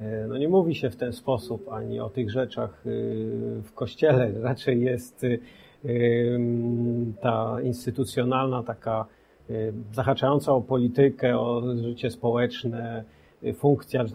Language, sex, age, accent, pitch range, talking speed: Polish, male, 40-59, native, 120-145 Hz, 105 wpm